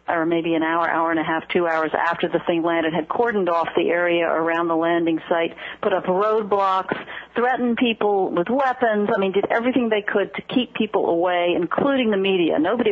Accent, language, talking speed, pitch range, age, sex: American, English, 205 wpm, 165-225 Hz, 50-69, female